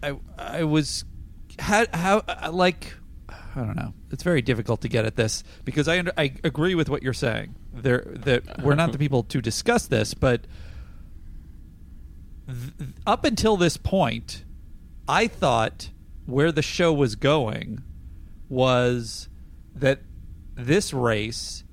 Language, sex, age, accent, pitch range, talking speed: English, male, 40-59, American, 90-140 Hz, 140 wpm